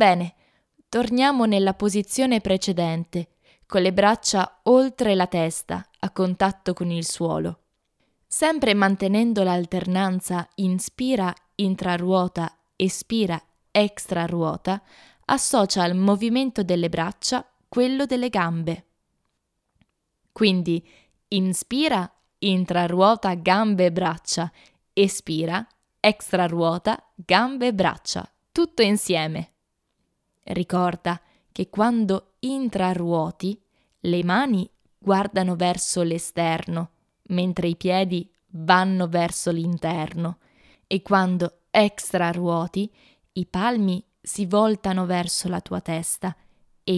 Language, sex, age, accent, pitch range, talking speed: Italian, female, 20-39, native, 175-205 Hz, 75 wpm